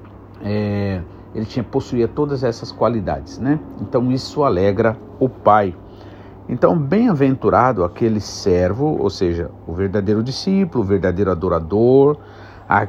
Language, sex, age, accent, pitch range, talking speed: Portuguese, male, 50-69, Brazilian, 100-120 Hz, 120 wpm